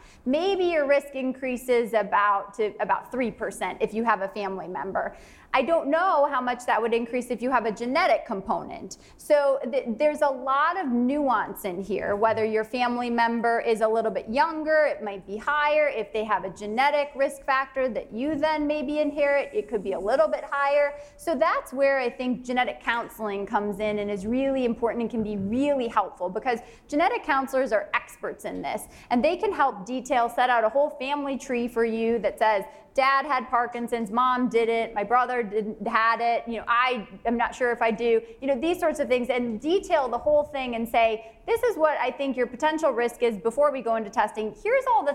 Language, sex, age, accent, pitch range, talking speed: English, female, 20-39, American, 225-285 Hz, 210 wpm